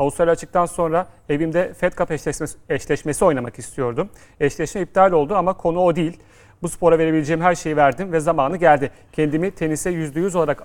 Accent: native